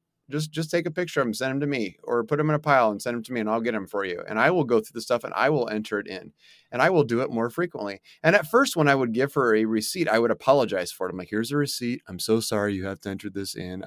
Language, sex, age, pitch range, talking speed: English, male, 30-49, 110-150 Hz, 335 wpm